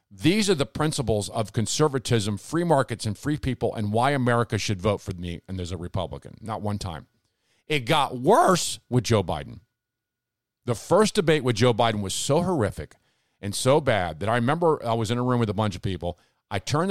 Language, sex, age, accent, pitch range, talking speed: English, male, 50-69, American, 105-145 Hz, 205 wpm